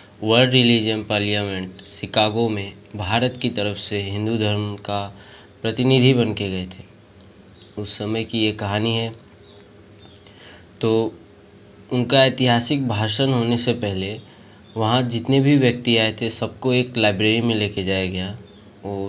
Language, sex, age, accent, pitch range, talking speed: Hindi, male, 20-39, native, 100-115 Hz, 135 wpm